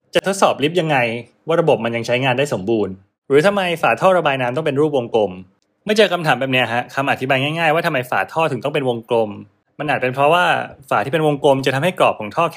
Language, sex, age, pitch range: Thai, male, 20-39, 115-160 Hz